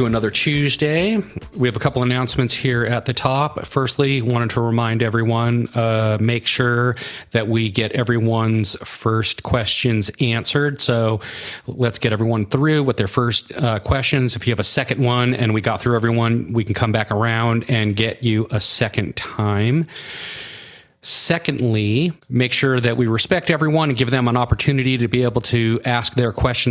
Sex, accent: male, American